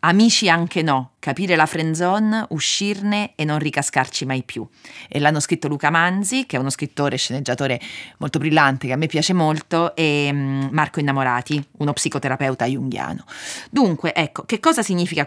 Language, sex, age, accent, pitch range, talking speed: Italian, female, 30-49, native, 140-180 Hz, 160 wpm